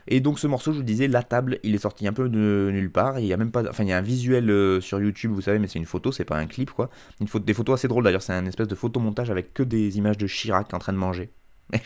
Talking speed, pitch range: 320 wpm, 90-110 Hz